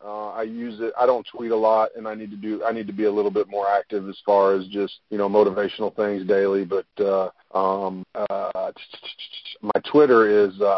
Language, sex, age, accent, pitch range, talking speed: English, male, 30-49, American, 95-105 Hz, 200 wpm